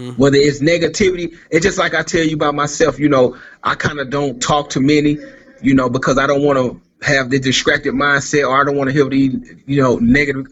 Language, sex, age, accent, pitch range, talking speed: English, male, 30-49, American, 130-170 Hz, 235 wpm